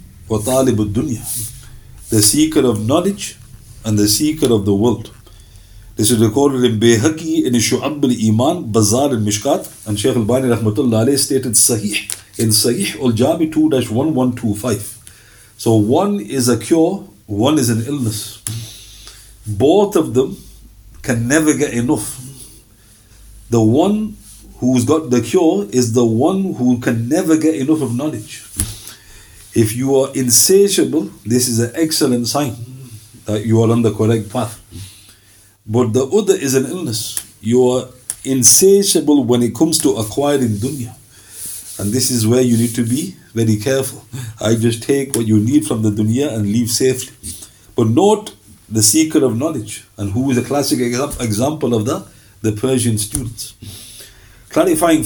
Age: 50-69